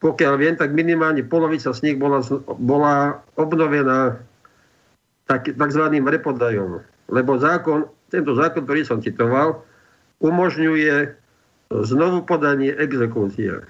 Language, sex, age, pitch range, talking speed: Slovak, male, 50-69, 135-165 Hz, 105 wpm